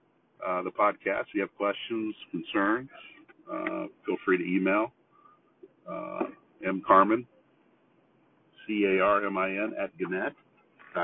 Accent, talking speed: American, 130 wpm